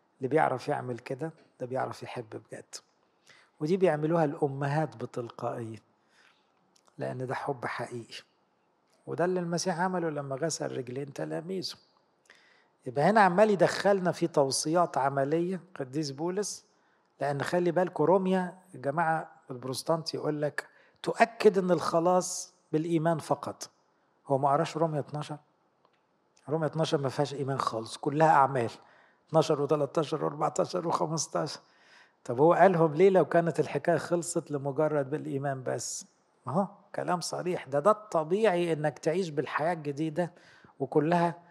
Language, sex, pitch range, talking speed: English, male, 140-175 Hz, 125 wpm